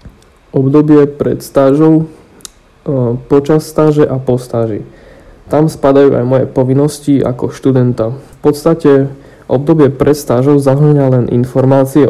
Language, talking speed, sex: Slovak, 110 wpm, male